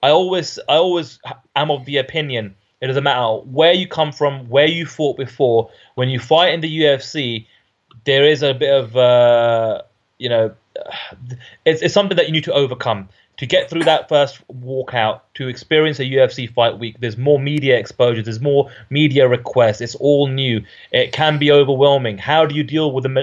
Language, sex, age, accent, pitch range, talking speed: English, male, 20-39, British, 120-150 Hz, 190 wpm